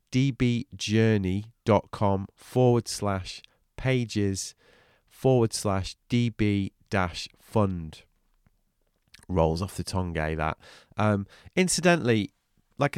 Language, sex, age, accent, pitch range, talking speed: English, male, 30-49, British, 95-125 Hz, 90 wpm